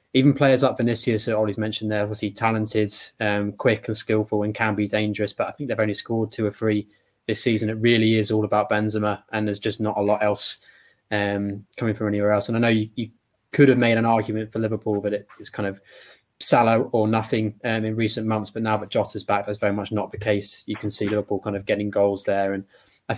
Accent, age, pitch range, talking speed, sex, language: British, 20-39, 105-110 Hz, 240 wpm, male, English